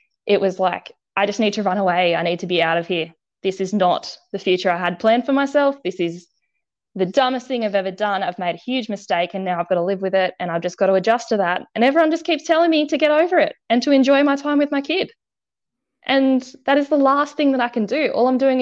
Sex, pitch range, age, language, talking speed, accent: female, 185-260 Hz, 10-29, English, 275 wpm, Australian